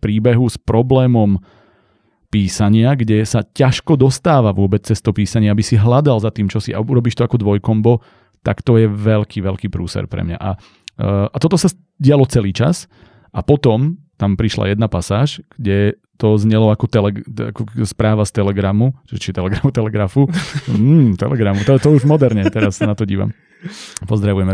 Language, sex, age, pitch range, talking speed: Slovak, male, 30-49, 100-125 Hz, 170 wpm